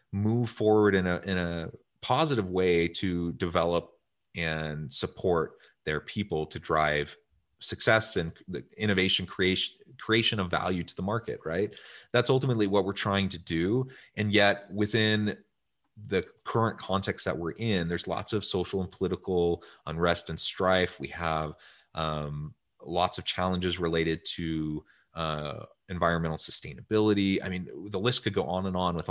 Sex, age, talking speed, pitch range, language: male, 30-49, 155 wpm, 80-100 Hz, English